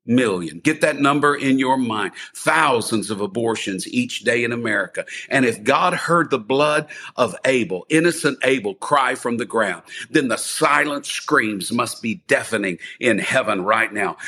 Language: English